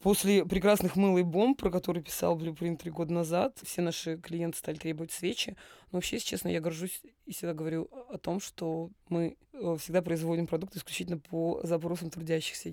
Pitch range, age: 160-180 Hz, 20-39